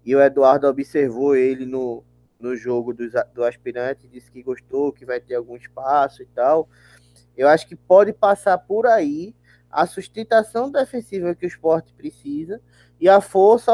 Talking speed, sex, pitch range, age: 165 wpm, male, 140-185 Hz, 20-39